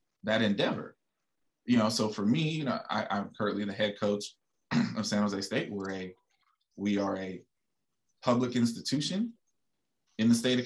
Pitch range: 100-125 Hz